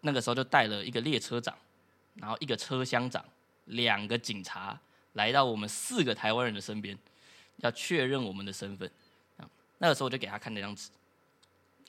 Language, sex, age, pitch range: Chinese, male, 20-39, 110-145 Hz